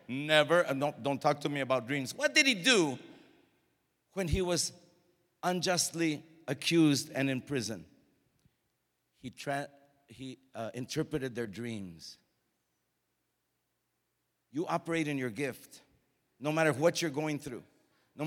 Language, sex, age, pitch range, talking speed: English, male, 50-69, 140-190 Hz, 130 wpm